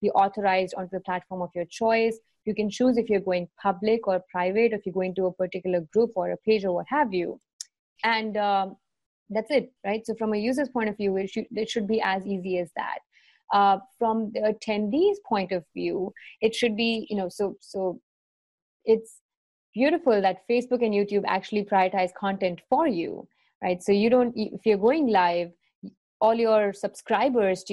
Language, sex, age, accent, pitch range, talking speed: English, female, 30-49, Indian, 185-225 Hz, 195 wpm